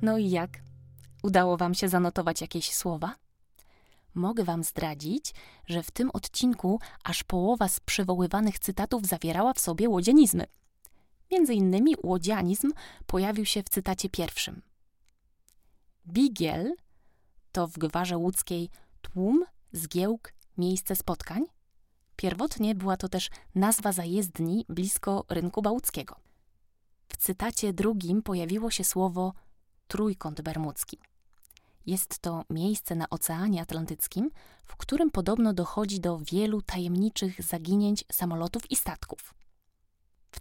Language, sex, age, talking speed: English, female, 20-39, 115 wpm